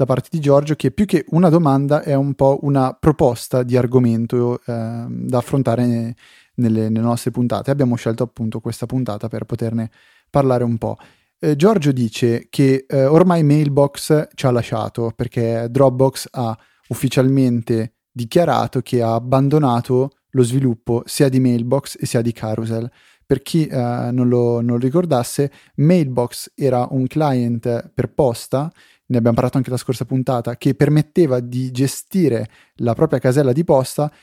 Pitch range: 120-140 Hz